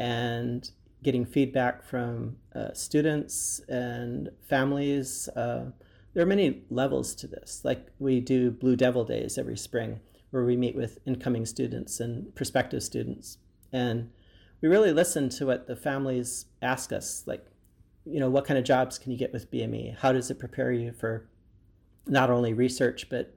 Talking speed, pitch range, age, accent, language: 165 wpm, 110-135 Hz, 40-59, American, English